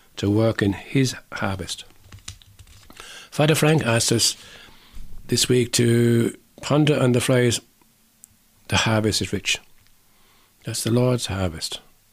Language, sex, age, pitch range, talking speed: English, male, 50-69, 105-130 Hz, 120 wpm